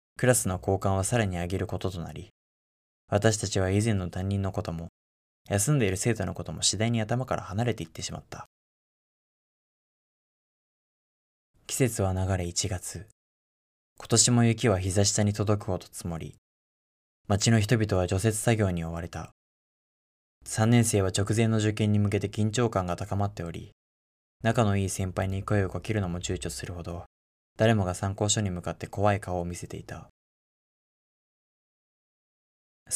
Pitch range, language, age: 85-110 Hz, Japanese, 20-39